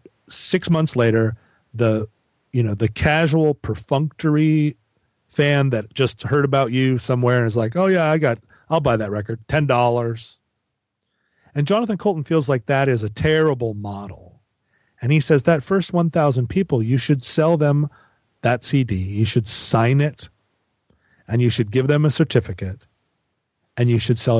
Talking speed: 165 wpm